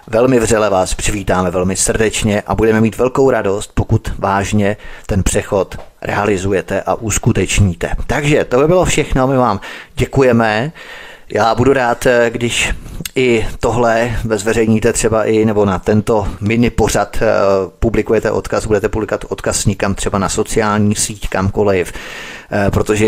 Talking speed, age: 135 wpm, 30-49